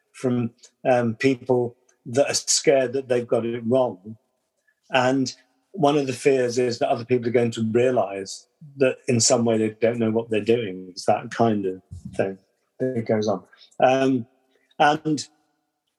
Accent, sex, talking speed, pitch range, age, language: British, male, 165 wpm, 115-135 Hz, 50-69, English